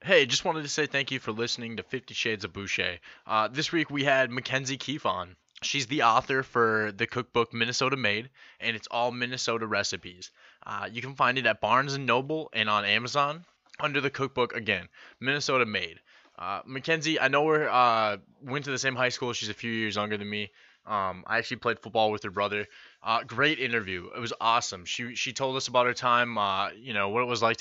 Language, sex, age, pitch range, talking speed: English, male, 20-39, 105-130 Hz, 215 wpm